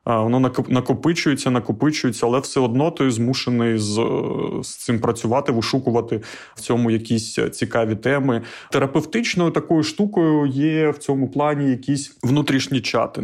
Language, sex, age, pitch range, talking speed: Ukrainian, male, 20-39, 115-135 Hz, 130 wpm